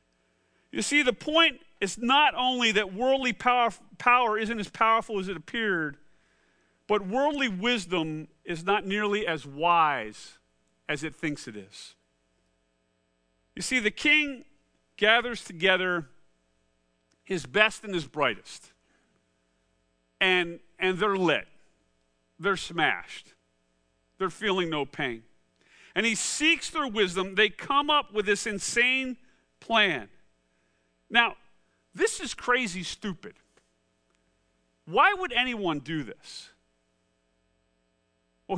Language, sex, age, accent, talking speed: English, male, 40-59, American, 115 wpm